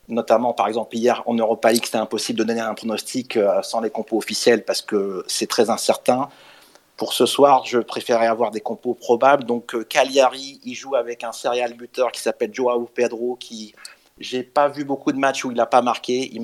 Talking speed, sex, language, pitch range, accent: 210 wpm, male, French, 115-135 Hz, French